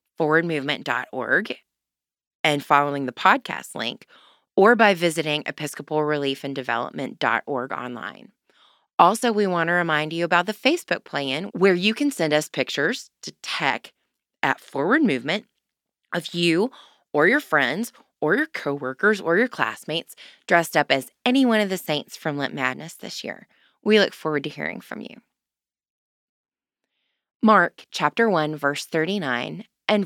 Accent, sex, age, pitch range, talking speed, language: American, female, 20-39, 150-205 Hz, 140 wpm, English